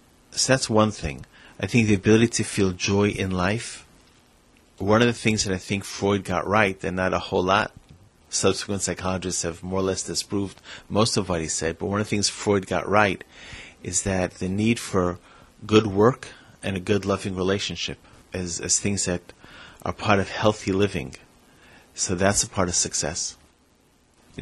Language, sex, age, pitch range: English, male, 30-49, 90-105 Hz